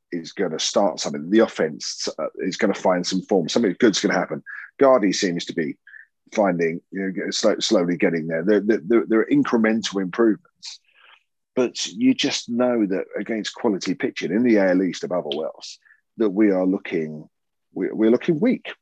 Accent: British